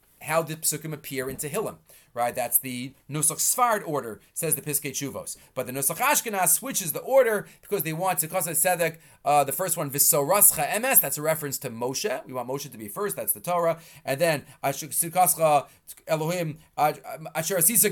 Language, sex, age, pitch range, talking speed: English, male, 30-49, 135-180 Hz, 180 wpm